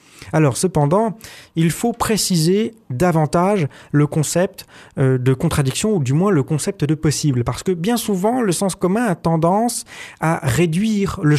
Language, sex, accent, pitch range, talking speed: French, male, French, 140-195 Hz, 160 wpm